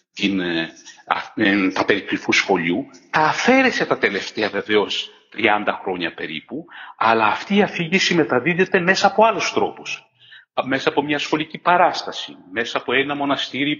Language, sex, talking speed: Greek, male, 130 wpm